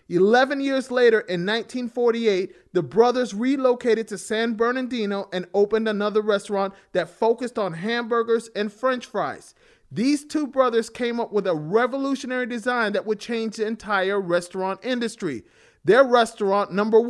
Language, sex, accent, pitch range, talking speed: English, male, American, 195-235 Hz, 145 wpm